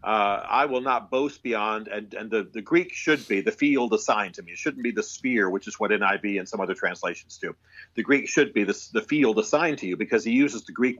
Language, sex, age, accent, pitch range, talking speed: English, male, 40-59, American, 110-140 Hz, 255 wpm